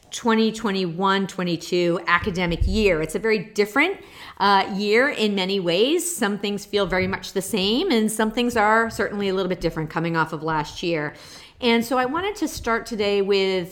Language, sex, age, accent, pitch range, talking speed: English, female, 40-59, American, 180-220 Hz, 175 wpm